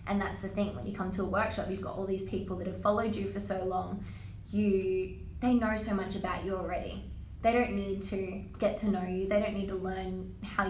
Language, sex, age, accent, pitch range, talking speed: English, female, 20-39, Australian, 185-205 Hz, 245 wpm